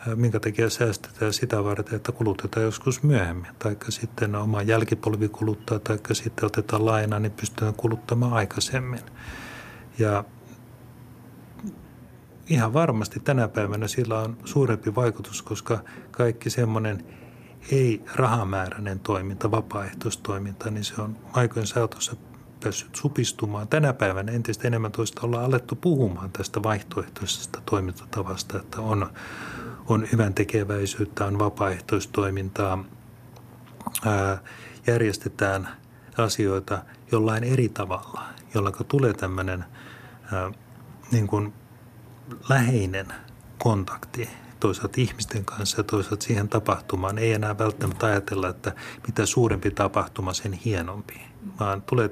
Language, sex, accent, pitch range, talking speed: Finnish, male, native, 105-120 Hz, 105 wpm